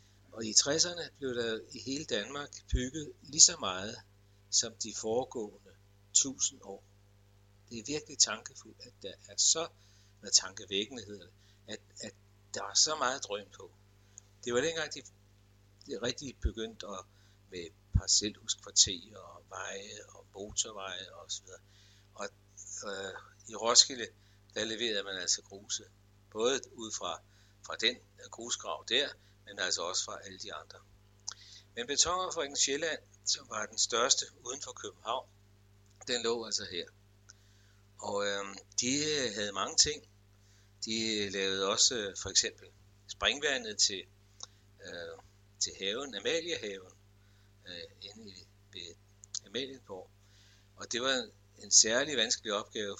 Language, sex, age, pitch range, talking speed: Danish, male, 60-79, 100-110 Hz, 135 wpm